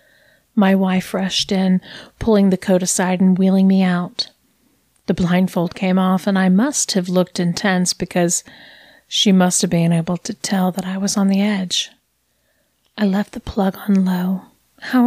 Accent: American